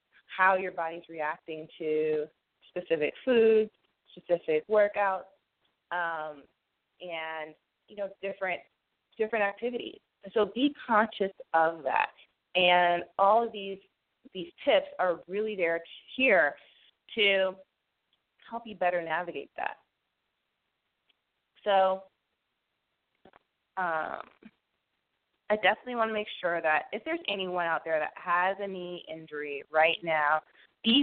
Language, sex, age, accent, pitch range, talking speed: English, female, 20-39, American, 165-205 Hz, 115 wpm